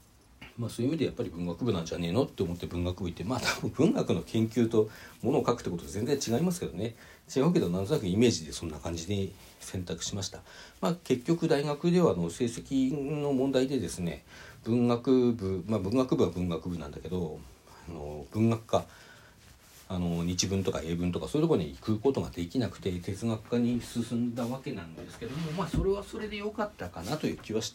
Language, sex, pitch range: Japanese, male, 85-130 Hz